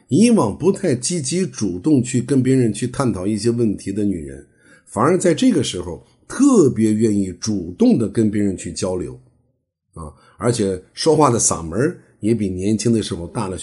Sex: male